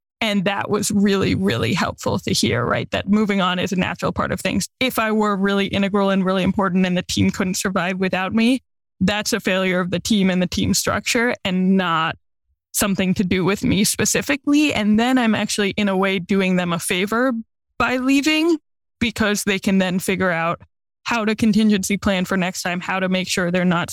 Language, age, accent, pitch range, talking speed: English, 10-29, American, 185-230 Hz, 210 wpm